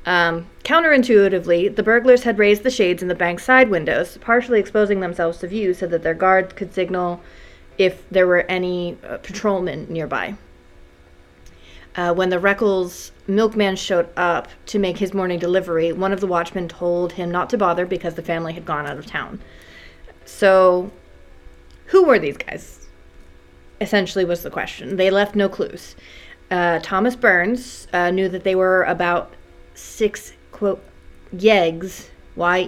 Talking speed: 160 wpm